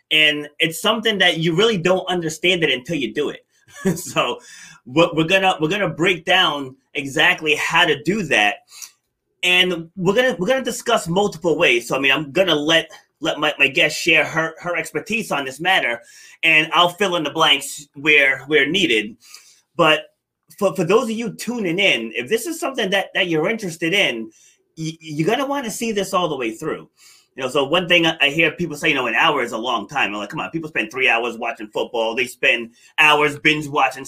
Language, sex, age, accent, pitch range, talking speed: English, male, 30-49, American, 150-185 Hz, 215 wpm